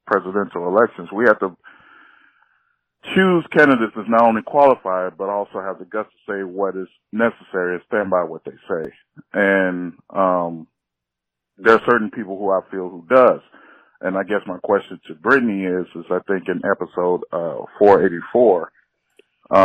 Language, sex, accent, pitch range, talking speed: English, male, American, 90-110 Hz, 160 wpm